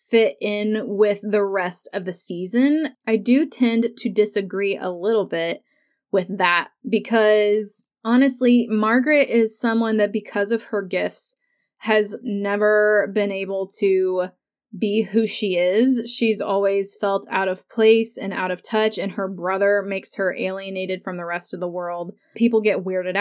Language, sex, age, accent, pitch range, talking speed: English, female, 20-39, American, 195-225 Hz, 160 wpm